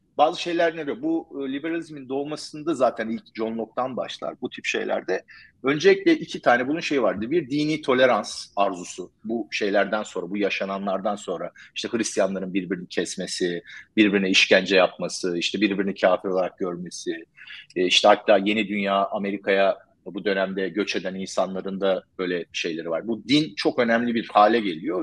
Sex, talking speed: male, 155 wpm